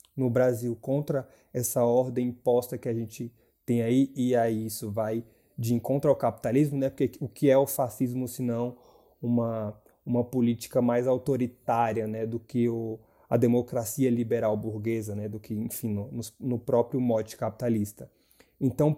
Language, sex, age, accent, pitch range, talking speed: Portuguese, male, 20-39, Brazilian, 115-135 Hz, 160 wpm